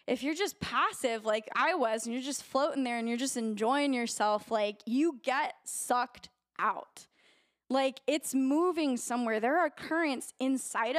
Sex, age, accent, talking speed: female, 10-29, American, 165 wpm